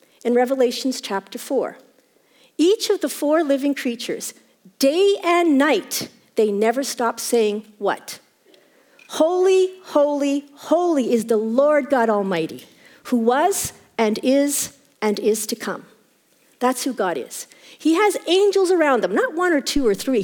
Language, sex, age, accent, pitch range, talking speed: English, female, 50-69, American, 240-360 Hz, 145 wpm